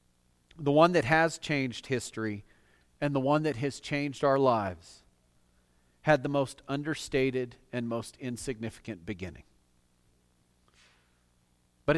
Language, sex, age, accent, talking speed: English, male, 40-59, American, 115 wpm